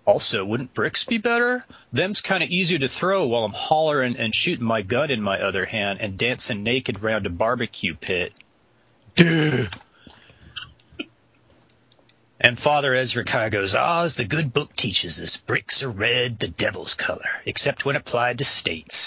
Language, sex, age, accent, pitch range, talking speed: English, male, 30-49, American, 115-155 Hz, 165 wpm